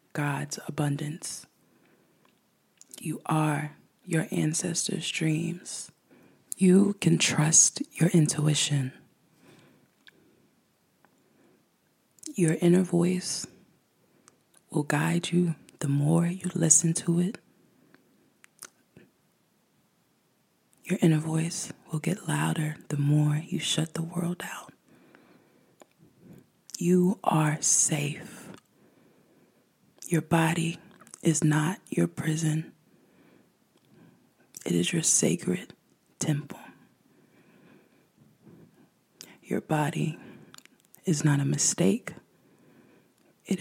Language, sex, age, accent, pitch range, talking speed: English, female, 20-39, American, 155-175 Hz, 80 wpm